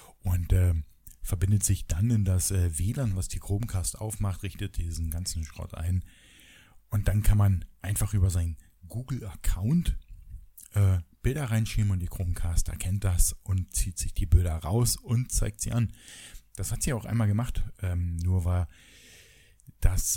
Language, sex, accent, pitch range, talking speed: German, male, German, 85-105 Hz, 160 wpm